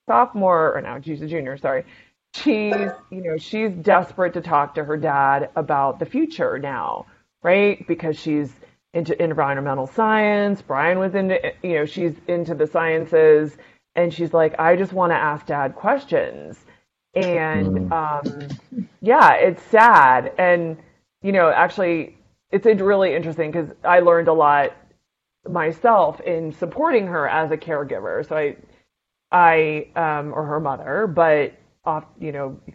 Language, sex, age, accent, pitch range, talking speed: English, female, 30-49, American, 155-215 Hz, 150 wpm